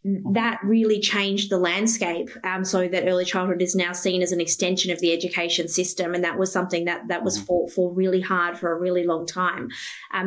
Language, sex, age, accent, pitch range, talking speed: English, female, 20-39, Australian, 180-200 Hz, 215 wpm